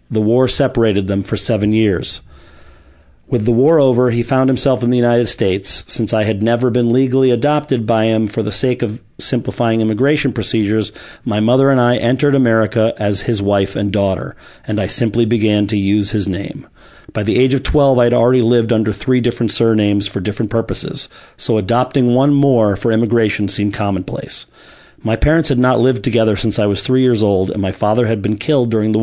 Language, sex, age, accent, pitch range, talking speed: English, male, 40-59, American, 105-125 Hz, 200 wpm